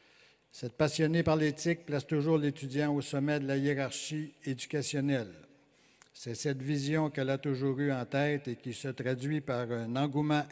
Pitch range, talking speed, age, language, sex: 130-150 Hz, 165 wpm, 60-79, French, male